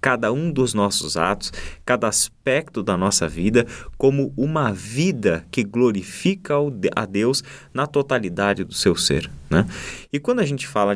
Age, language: 20-39, Portuguese